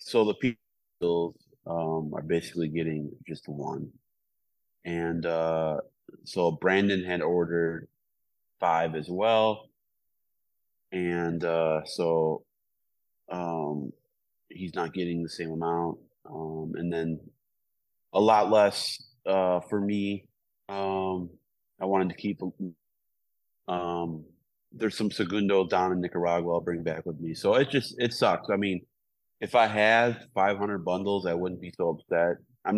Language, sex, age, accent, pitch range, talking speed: English, male, 30-49, American, 80-95 Hz, 135 wpm